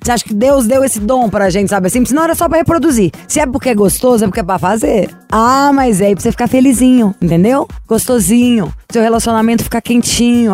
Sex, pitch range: female, 200-255 Hz